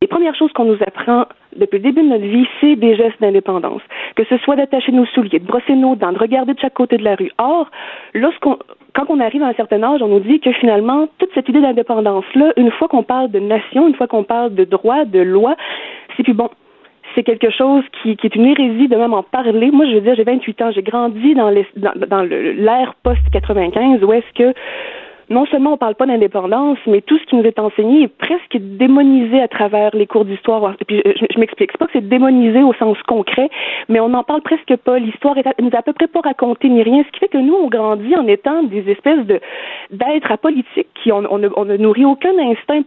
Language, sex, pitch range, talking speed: French, female, 220-290 Hz, 240 wpm